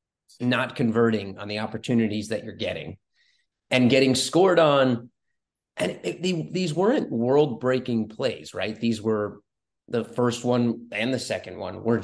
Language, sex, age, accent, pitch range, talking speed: English, male, 30-49, American, 110-125 Hz, 160 wpm